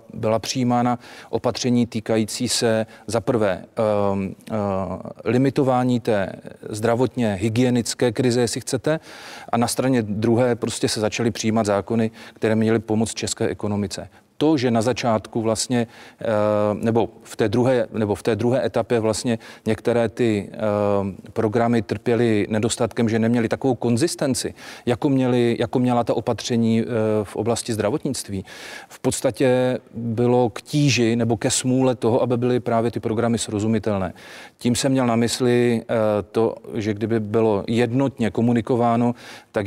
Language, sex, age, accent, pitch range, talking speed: Czech, male, 40-59, native, 105-120 Hz, 125 wpm